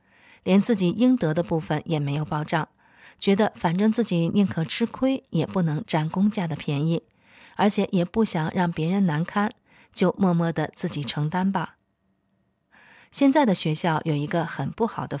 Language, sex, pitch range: Chinese, female, 160-220 Hz